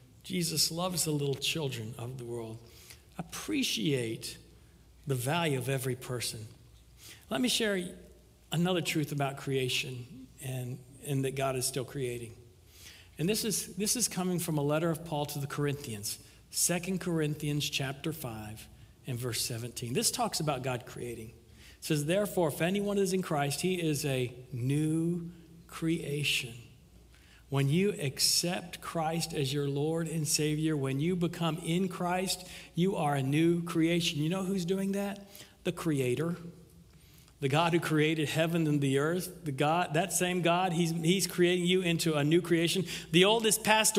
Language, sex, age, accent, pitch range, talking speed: English, male, 60-79, American, 140-195 Hz, 160 wpm